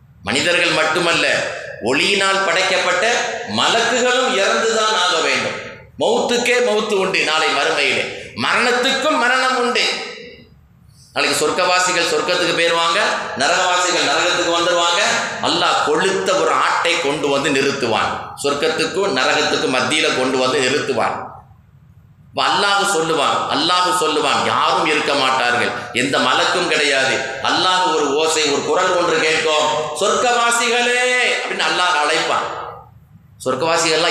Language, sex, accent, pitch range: Tamil, male, native, 140-200 Hz